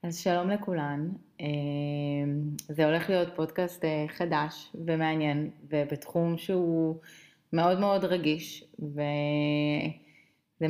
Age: 30-49